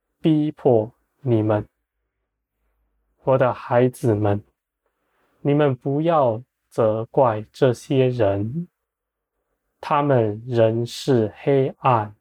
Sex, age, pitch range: male, 20-39, 105-135 Hz